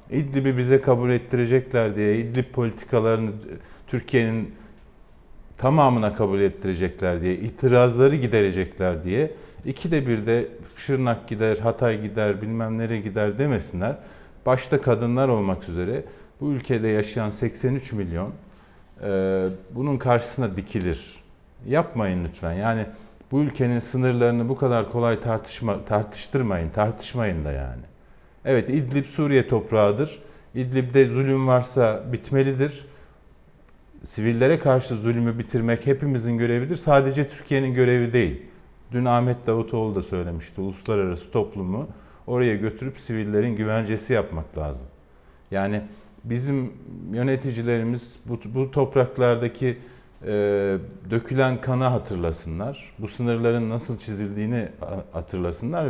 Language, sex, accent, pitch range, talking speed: Turkish, male, native, 100-130 Hz, 105 wpm